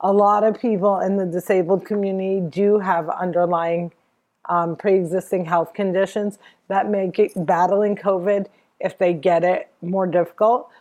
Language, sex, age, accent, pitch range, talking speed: English, female, 40-59, American, 185-215 Hz, 145 wpm